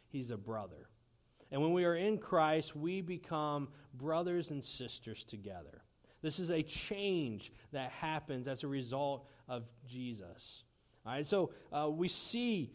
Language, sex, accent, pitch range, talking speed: English, male, American, 120-170 Hz, 150 wpm